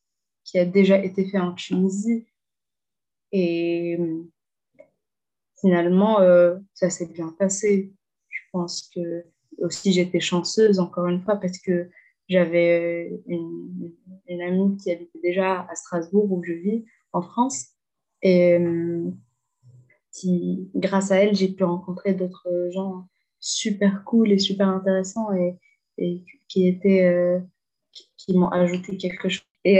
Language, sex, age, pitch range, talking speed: French, female, 20-39, 175-195 Hz, 130 wpm